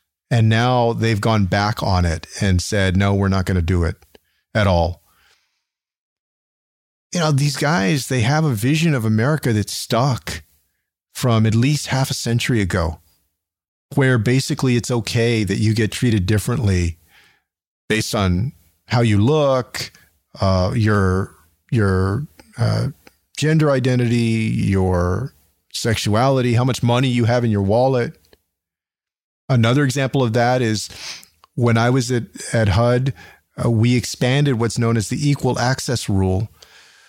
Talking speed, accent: 140 wpm, American